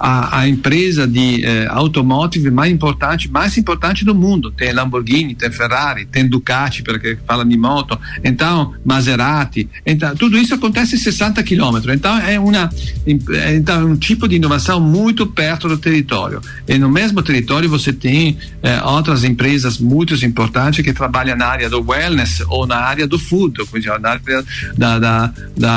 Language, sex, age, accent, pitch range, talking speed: Portuguese, male, 50-69, Italian, 120-170 Hz, 170 wpm